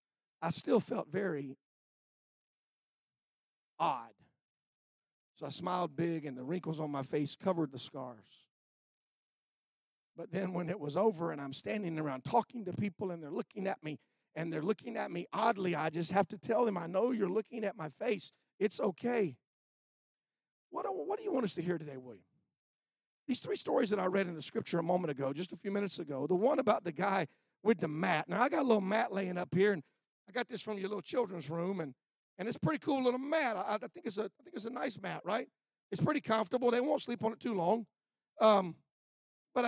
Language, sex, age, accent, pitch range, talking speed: English, male, 50-69, American, 180-275 Hz, 215 wpm